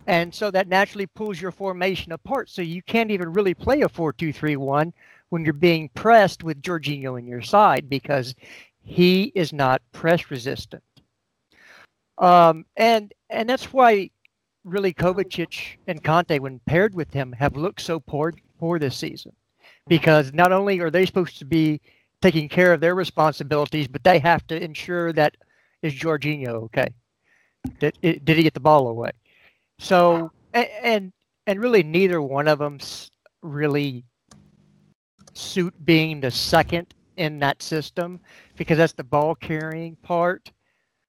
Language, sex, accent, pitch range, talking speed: English, male, American, 145-185 Hz, 150 wpm